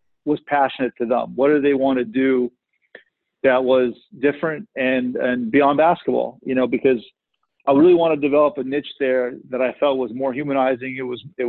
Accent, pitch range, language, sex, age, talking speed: American, 125-140 Hz, English, male, 40-59, 195 wpm